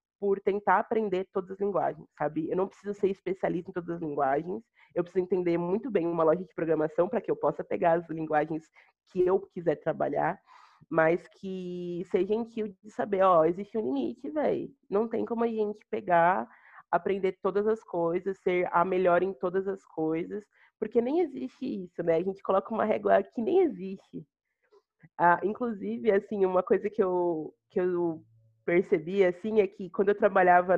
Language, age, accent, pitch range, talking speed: Portuguese, 30-49, Brazilian, 170-205 Hz, 180 wpm